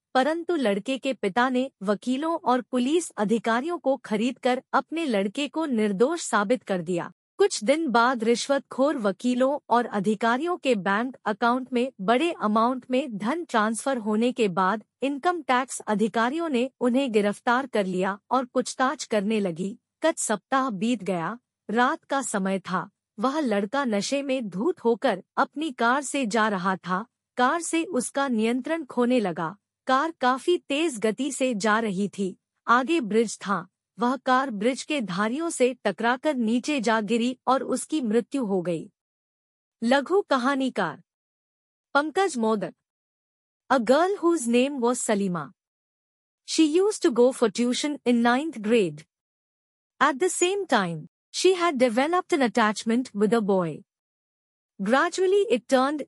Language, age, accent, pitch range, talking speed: English, 50-69, Indian, 215-275 Hz, 120 wpm